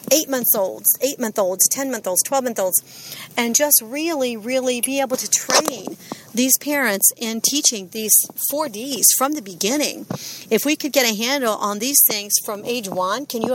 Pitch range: 195-255 Hz